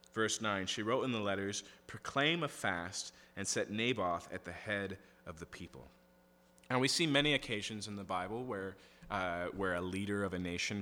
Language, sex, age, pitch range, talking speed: English, male, 30-49, 90-115 Hz, 195 wpm